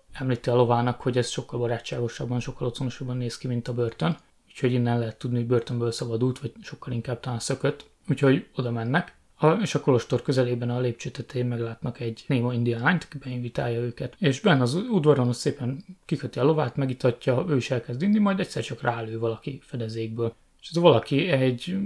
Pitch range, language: 120-145 Hz, Hungarian